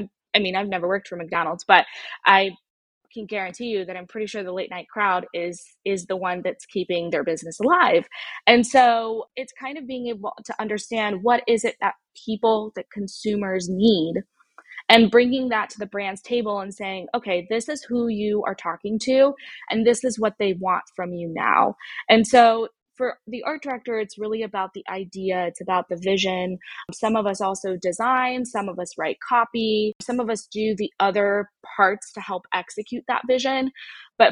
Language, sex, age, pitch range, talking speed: English, female, 20-39, 190-230 Hz, 190 wpm